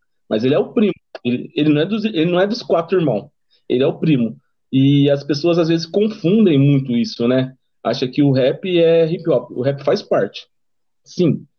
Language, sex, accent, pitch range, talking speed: Portuguese, male, Brazilian, 135-180 Hz, 190 wpm